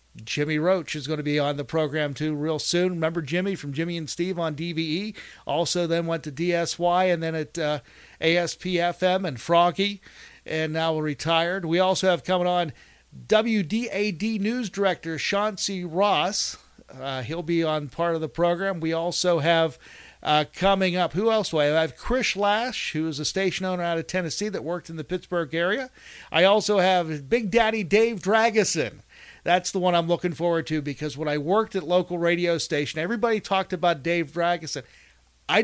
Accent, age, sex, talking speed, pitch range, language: American, 50-69, male, 185 wpm, 160-190 Hz, English